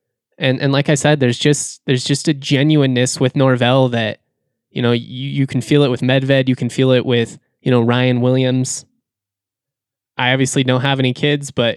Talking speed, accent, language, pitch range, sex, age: 200 wpm, American, English, 125-150 Hz, male, 20-39